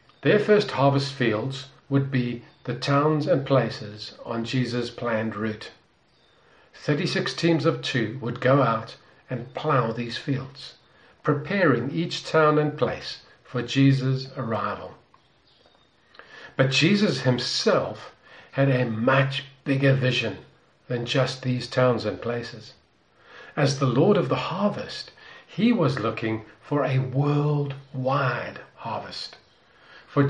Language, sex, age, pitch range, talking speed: English, male, 50-69, 125-150 Hz, 120 wpm